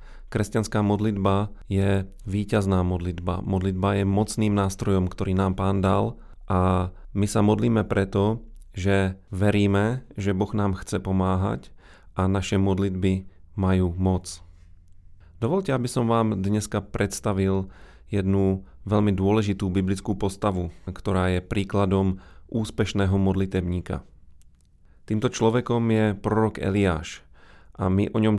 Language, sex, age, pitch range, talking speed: Slovak, male, 30-49, 95-105 Hz, 115 wpm